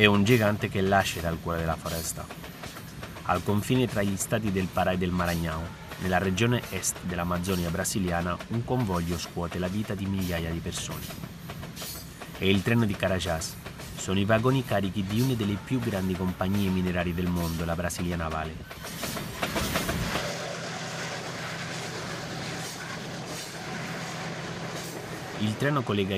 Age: 30-49